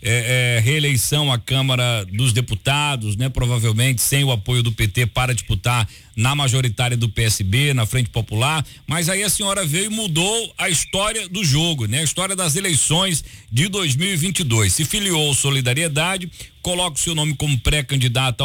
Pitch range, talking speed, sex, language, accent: 130-170 Hz, 165 wpm, male, Portuguese, Brazilian